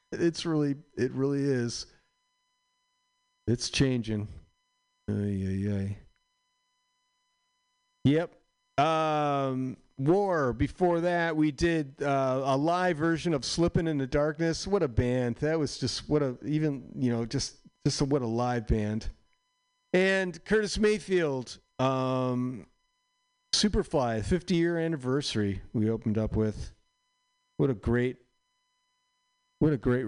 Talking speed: 120 wpm